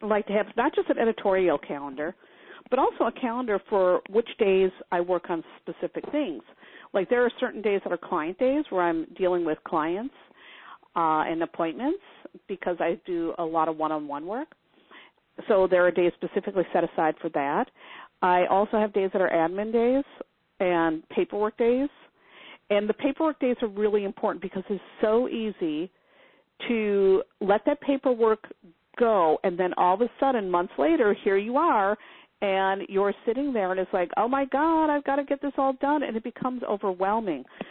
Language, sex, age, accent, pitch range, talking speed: English, female, 50-69, American, 180-245 Hz, 180 wpm